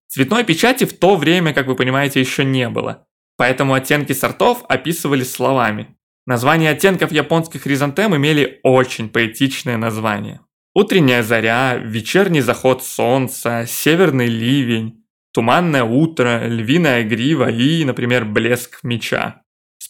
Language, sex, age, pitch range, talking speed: Russian, male, 20-39, 125-150 Hz, 120 wpm